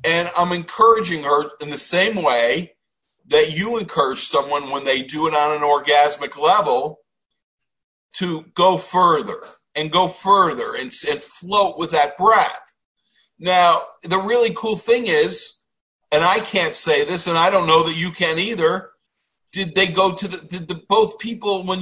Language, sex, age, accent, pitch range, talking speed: English, male, 50-69, American, 160-200 Hz, 170 wpm